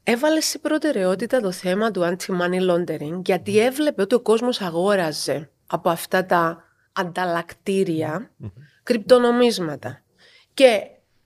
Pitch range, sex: 170-225 Hz, female